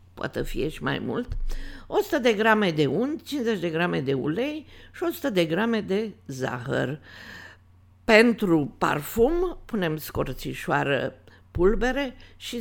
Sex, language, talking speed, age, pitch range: female, Romanian, 130 wpm, 50-69, 140-235 Hz